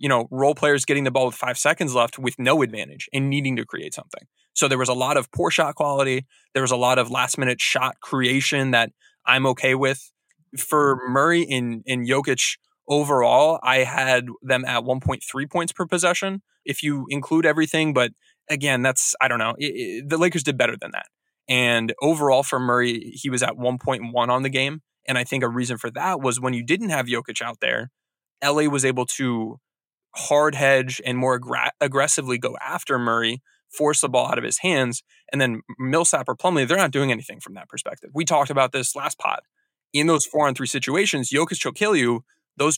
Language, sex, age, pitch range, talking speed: English, male, 20-39, 125-145 Hz, 215 wpm